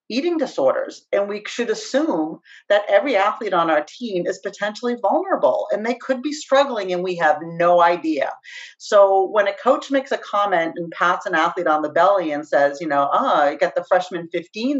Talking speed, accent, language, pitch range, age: 200 wpm, American, English, 175-260 Hz, 40-59